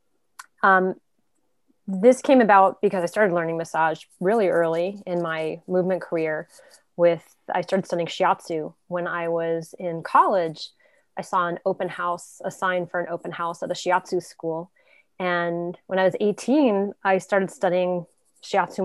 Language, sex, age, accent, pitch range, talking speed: English, female, 20-39, American, 170-205 Hz, 155 wpm